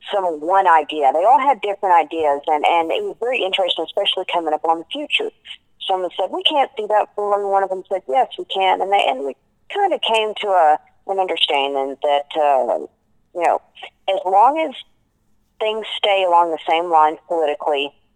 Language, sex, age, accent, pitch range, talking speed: English, female, 40-59, American, 155-205 Hz, 200 wpm